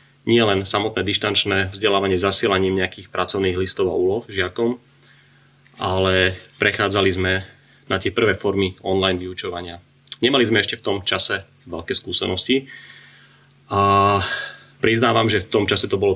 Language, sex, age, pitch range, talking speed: Slovak, male, 30-49, 95-115 Hz, 135 wpm